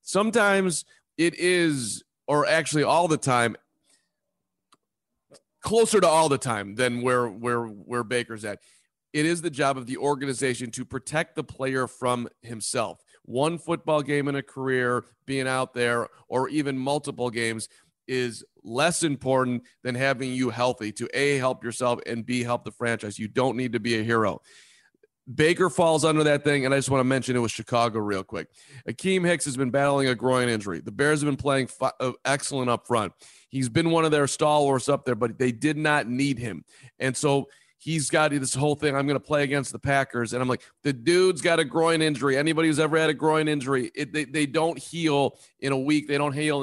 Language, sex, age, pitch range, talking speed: English, male, 40-59, 125-155 Hz, 205 wpm